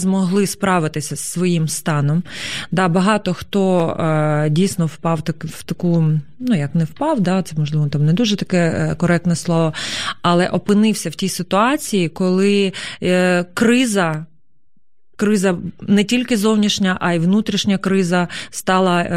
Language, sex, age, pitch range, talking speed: Ukrainian, female, 20-39, 165-195 Hz, 130 wpm